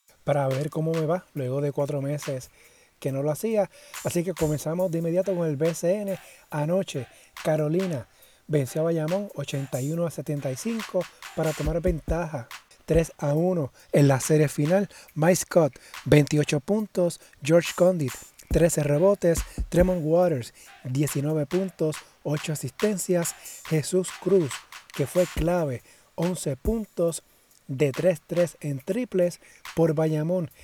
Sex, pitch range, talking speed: male, 145-175 Hz, 130 wpm